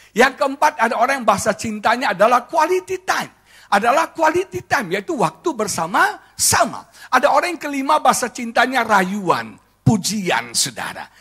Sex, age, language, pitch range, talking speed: male, 50-69, Indonesian, 115-180 Hz, 135 wpm